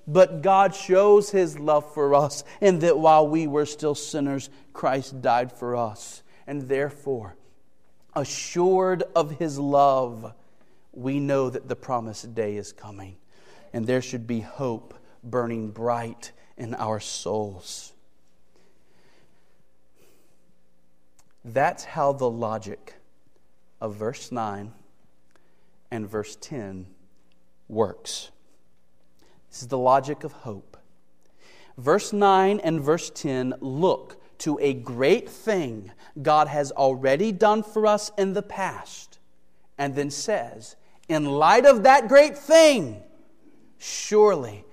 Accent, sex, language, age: American, male, English, 40-59